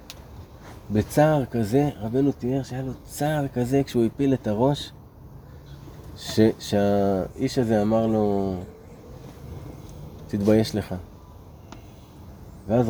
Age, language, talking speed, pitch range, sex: 30-49, Hebrew, 95 wpm, 100-150 Hz, male